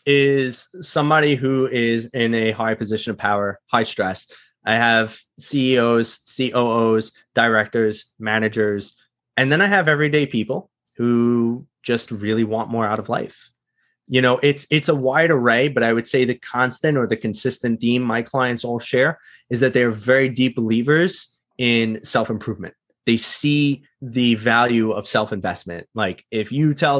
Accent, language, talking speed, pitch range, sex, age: American, English, 160 wpm, 115-135 Hz, male, 20-39